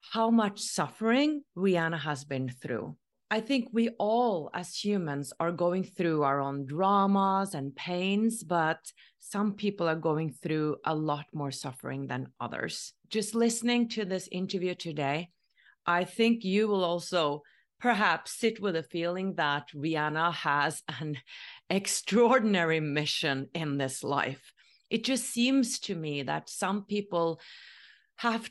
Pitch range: 160-210 Hz